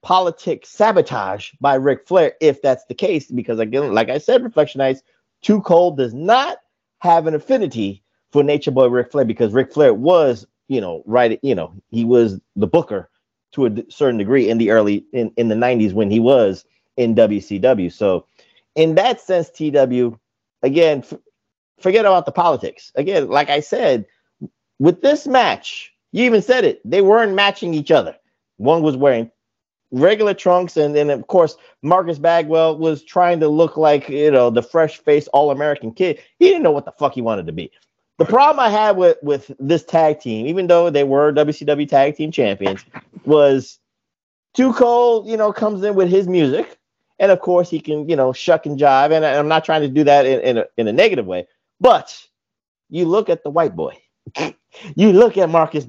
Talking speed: 195 wpm